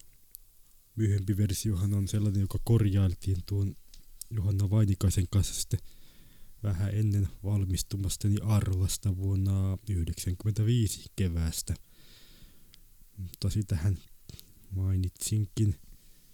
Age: 20-39